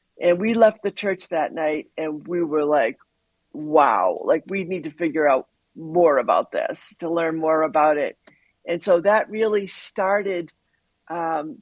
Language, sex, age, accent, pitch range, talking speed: English, female, 60-79, American, 165-210 Hz, 165 wpm